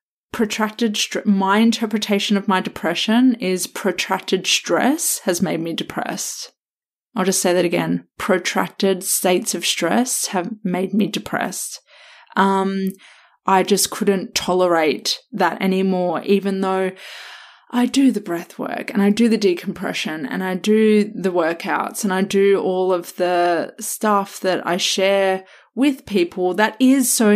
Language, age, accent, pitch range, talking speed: English, 20-39, Australian, 180-215 Hz, 145 wpm